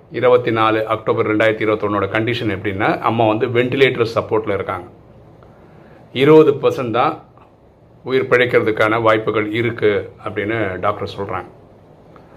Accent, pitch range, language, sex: native, 110-160 Hz, Tamil, male